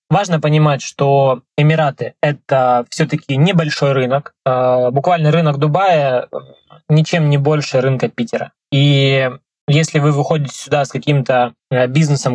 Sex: male